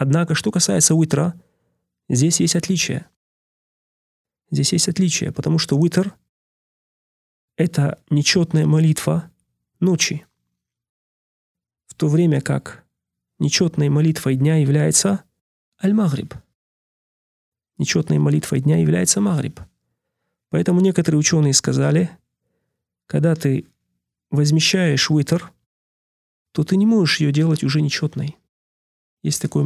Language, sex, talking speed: Russian, male, 100 wpm